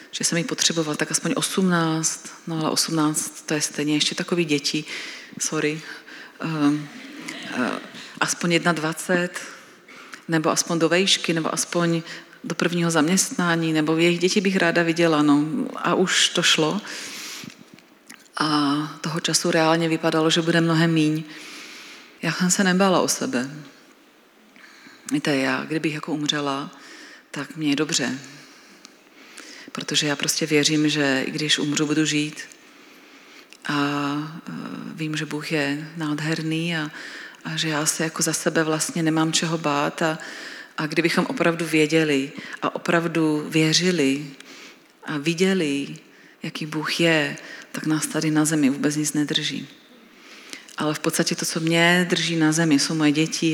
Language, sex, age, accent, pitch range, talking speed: Czech, female, 40-59, native, 150-170 Hz, 140 wpm